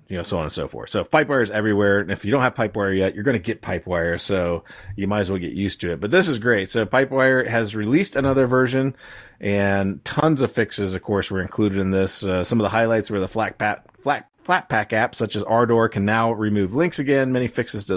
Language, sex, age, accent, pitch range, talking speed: English, male, 30-49, American, 95-125 Hz, 250 wpm